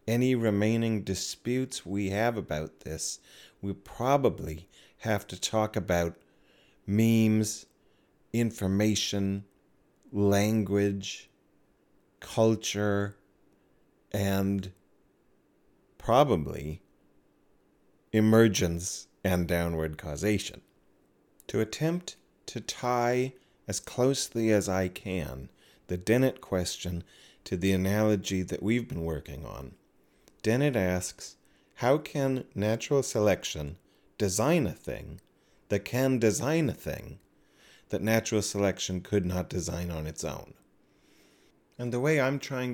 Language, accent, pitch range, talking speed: English, American, 95-125 Hz, 100 wpm